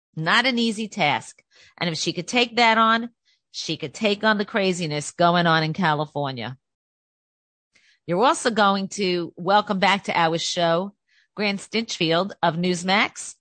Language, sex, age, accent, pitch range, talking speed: English, female, 40-59, American, 165-215 Hz, 150 wpm